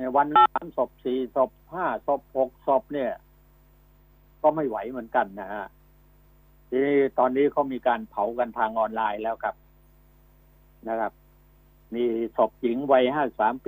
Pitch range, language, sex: 110-130 Hz, Thai, male